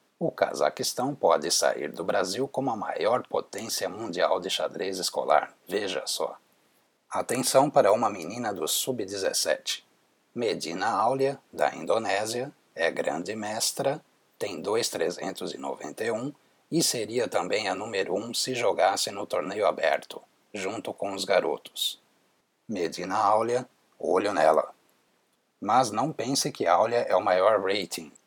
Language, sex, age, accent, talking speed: Portuguese, male, 60-79, Brazilian, 125 wpm